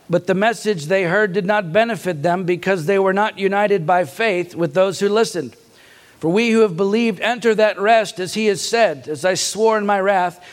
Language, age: English, 50-69